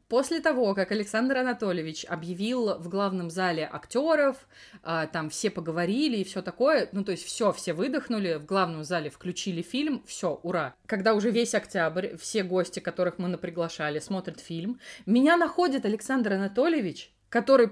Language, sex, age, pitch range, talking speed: Russian, female, 20-39, 185-270 Hz, 150 wpm